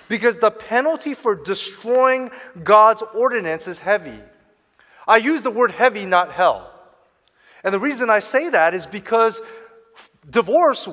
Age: 30-49